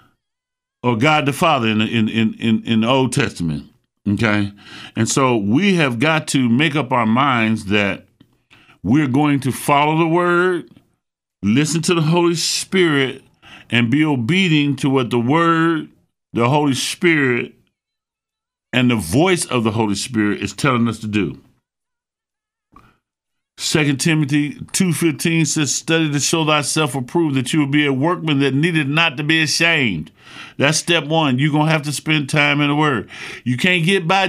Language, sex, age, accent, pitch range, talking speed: English, male, 50-69, American, 125-165 Hz, 165 wpm